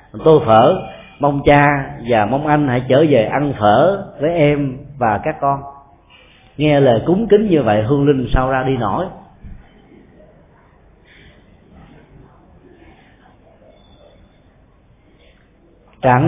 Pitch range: 120-160 Hz